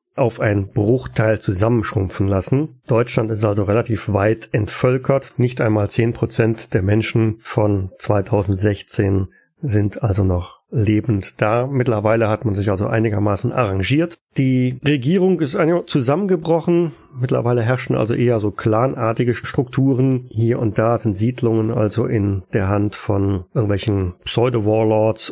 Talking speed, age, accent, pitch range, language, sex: 130 wpm, 40-59, German, 105-130 Hz, German, male